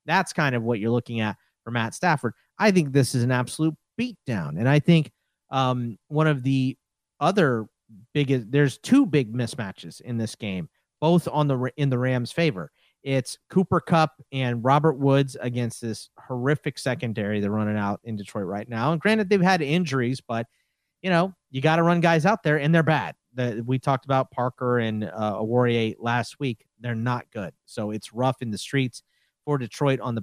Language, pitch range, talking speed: English, 120-160 Hz, 195 wpm